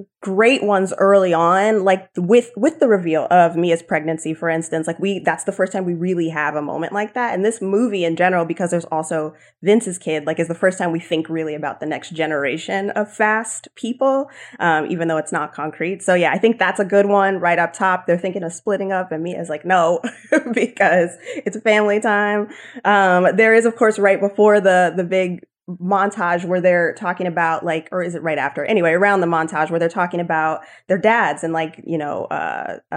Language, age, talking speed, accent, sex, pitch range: English, 20-39, 215 wpm, American, female, 165-205 Hz